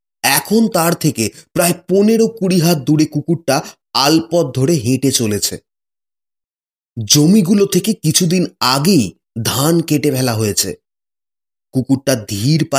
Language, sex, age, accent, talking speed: Bengali, male, 30-49, native, 105 wpm